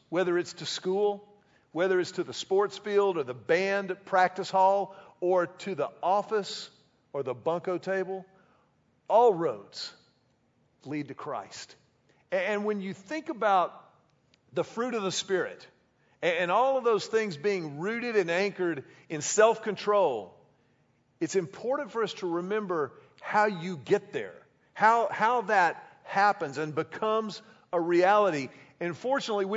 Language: English